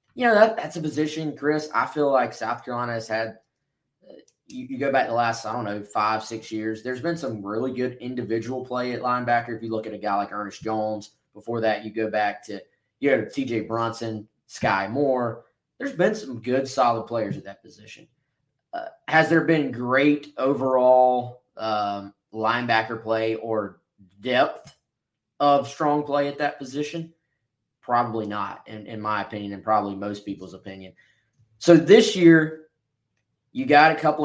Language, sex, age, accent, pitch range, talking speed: English, male, 20-39, American, 110-145 Hz, 175 wpm